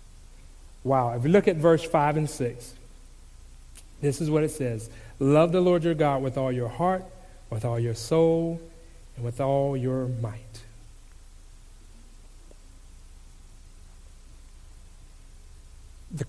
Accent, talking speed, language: American, 120 wpm, English